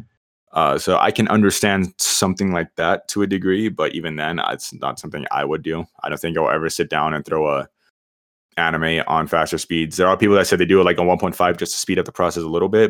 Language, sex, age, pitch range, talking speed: English, male, 20-39, 80-100 Hz, 250 wpm